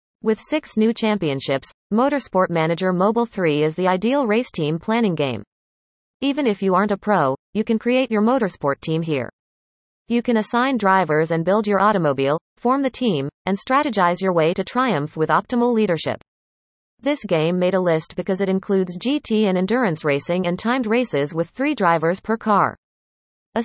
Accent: American